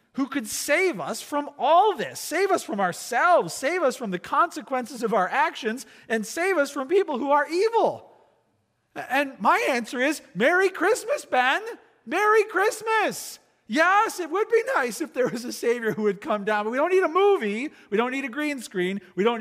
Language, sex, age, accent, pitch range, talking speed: English, male, 40-59, American, 175-280 Hz, 200 wpm